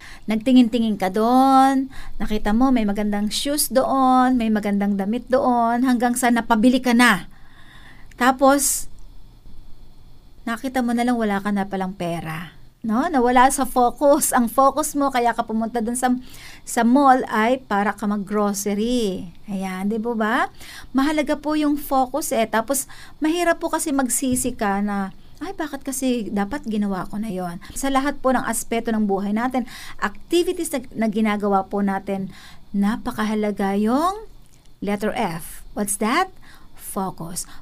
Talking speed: 145 wpm